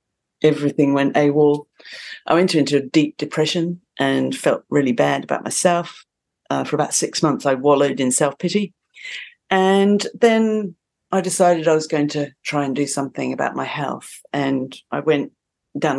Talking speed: 160 wpm